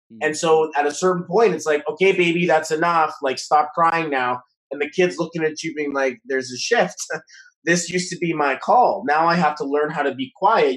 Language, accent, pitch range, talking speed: English, American, 140-170 Hz, 235 wpm